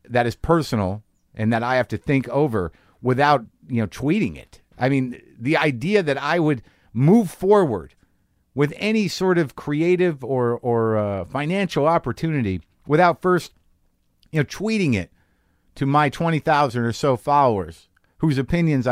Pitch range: 120-180 Hz